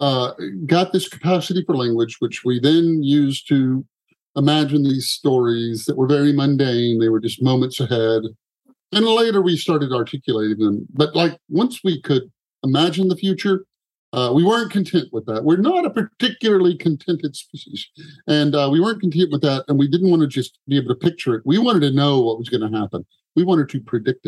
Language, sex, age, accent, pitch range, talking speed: English, male, 50-69, American, 125-165 Hz, 200 wpm